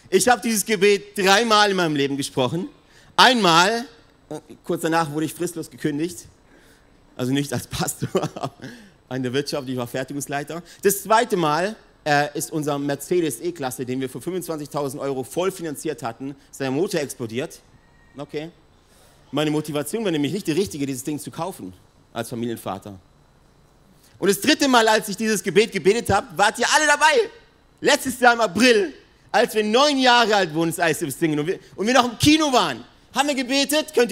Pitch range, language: 140-205 Hz, German